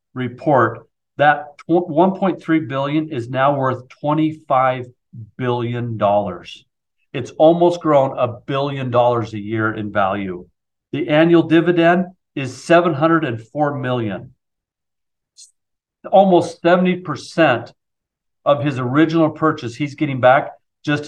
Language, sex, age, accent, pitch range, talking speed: English, male, 40-59, American, 120-165 Hz, 100 wpm